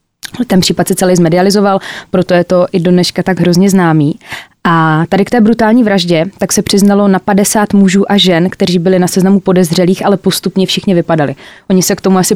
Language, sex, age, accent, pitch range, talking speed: Czech, female, 20-39, native, 180-215 Hz, 200 wpm